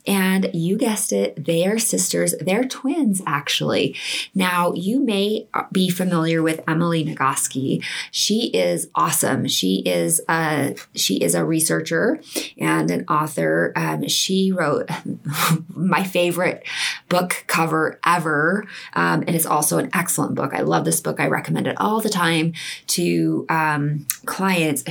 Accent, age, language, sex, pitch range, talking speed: American, 20-39, English, female, 145-190 Hz, 140 wpm